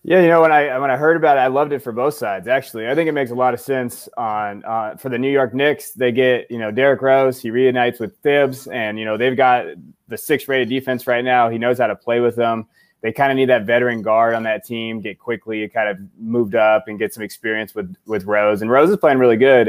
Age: 20-39